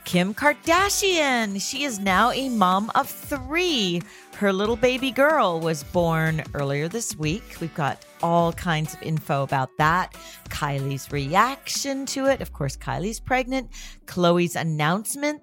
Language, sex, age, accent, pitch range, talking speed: English, female, 40-59, American, 160-230 Hz, 140 wpm